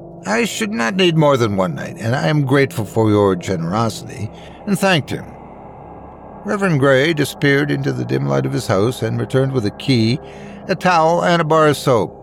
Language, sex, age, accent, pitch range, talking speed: English, male, 60-79, American, 100-150 Hz, 195 wpm